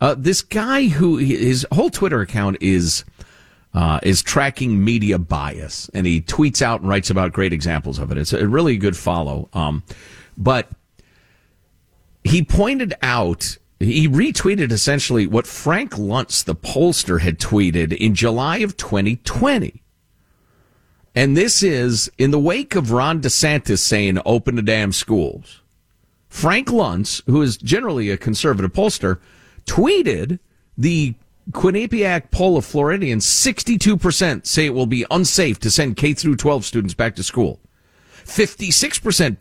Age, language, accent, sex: 50-69, English, American, male